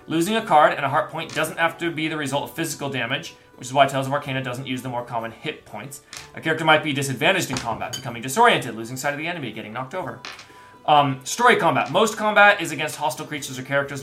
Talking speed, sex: 245 wpm, male